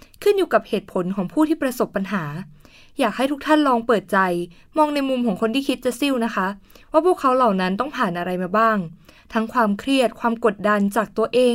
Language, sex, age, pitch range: Thai, female, 20-39, 190-265 Hz